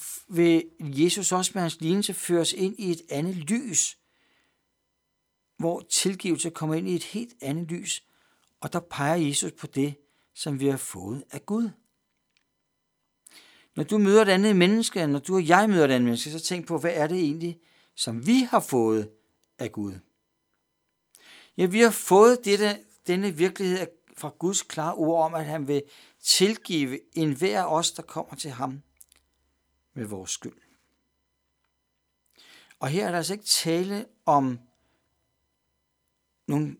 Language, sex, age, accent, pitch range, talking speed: Danish, male, 60-79, native, 130-185 Hz, 155 wpm